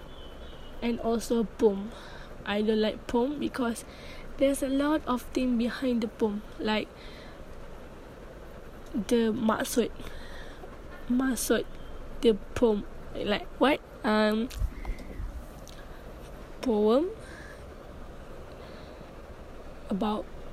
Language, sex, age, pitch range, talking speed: English, female, 20-39, 215-270 Hz, 80 wpm